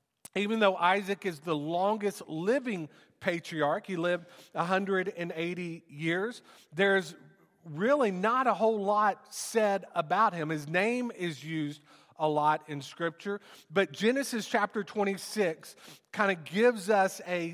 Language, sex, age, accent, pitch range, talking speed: English, male, 40-59, American, 155-200 Hz, 130 wpm